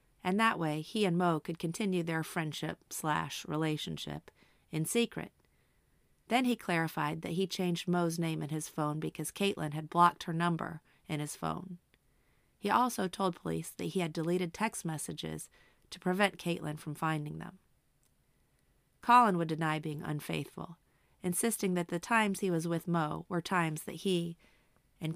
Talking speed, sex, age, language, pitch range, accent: 155 wpm, female, 30-49, English, 155-185 Hz, American